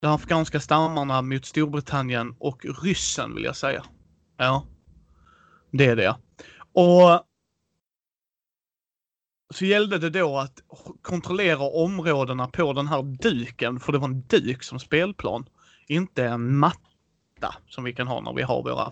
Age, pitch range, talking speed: 30-49, 130-165 Hz, 140 wpm